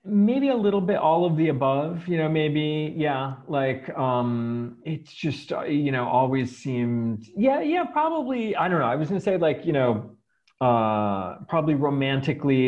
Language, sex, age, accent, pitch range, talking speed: English, male, 40-59, American, 120-155 Hz, 170 wpm